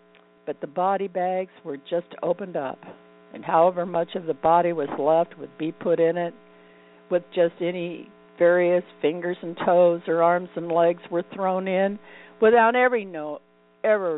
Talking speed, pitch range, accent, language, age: 160 wpm, 140-175 Hz, American, English, 60-79